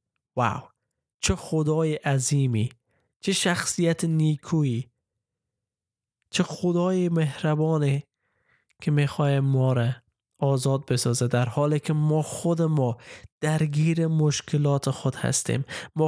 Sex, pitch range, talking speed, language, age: male, 125-155 Hz, 100 wpm, Persian, 20-39